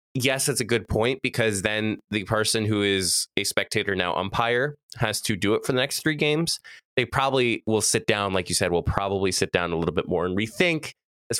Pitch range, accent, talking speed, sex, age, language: 95-115 Hz, American, 225 wpm, male, 20-39, English